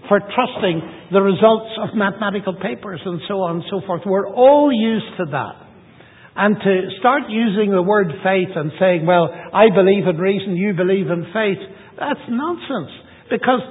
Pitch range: 180-225 Hz